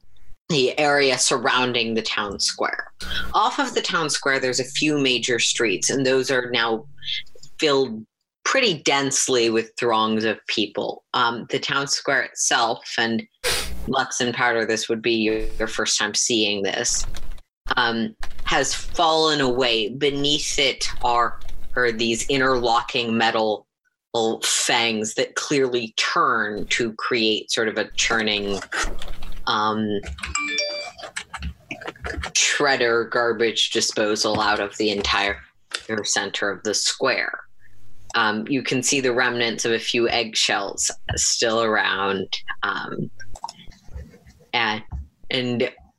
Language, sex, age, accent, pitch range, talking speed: English, female, 30-49, American, 105-125 Hz, 120 wpm